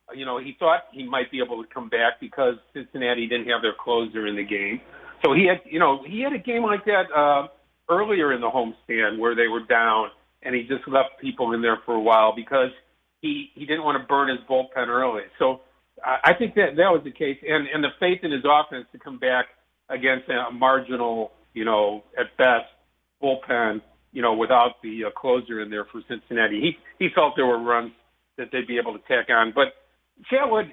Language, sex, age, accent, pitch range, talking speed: English, male, 50-69, American, 120-160 Hz, 215 wpm